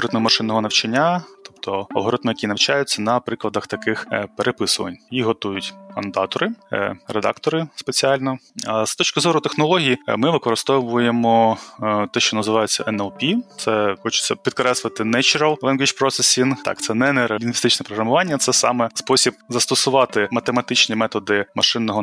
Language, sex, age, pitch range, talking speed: Ukrainian, male, 20-39, 110-125 Hz, 120 wpm